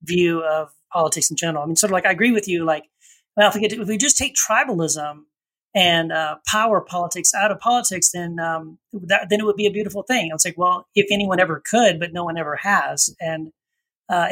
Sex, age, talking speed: male, 30-49, 220 wpm